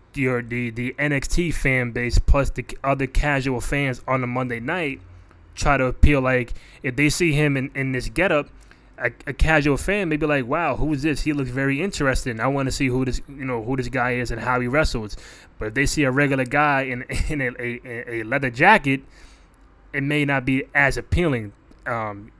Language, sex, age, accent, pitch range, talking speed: English, male, 20-39, American, 125-145 Hz, 210 wpm